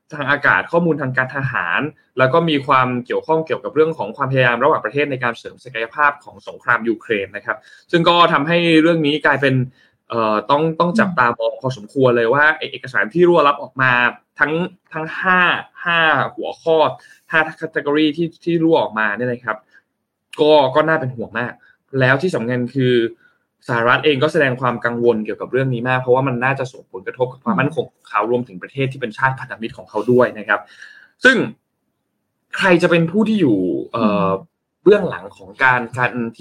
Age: 20-39